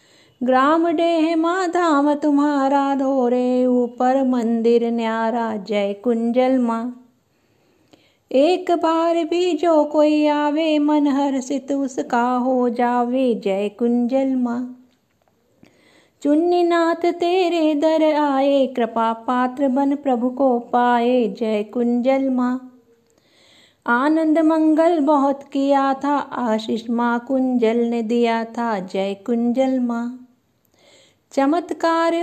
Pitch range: 245-305 Hz